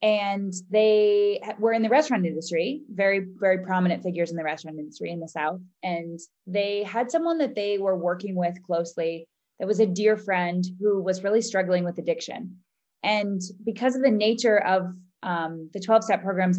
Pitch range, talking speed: 170-205 Hz, 175 wpm